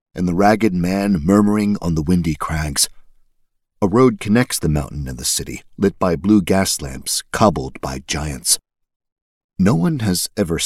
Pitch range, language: 75-95 Hz, English